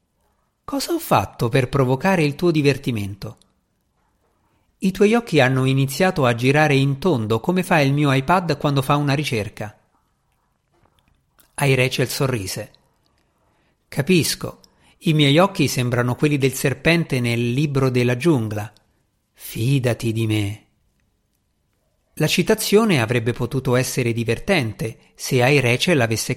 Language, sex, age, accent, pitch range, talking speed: Italian, male, 50-69, native, 115-155 Hz, 120 wpm